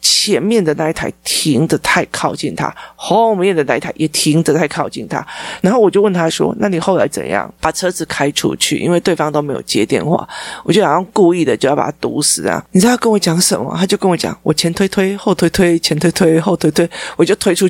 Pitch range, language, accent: 175-250 Hz, Chinese, native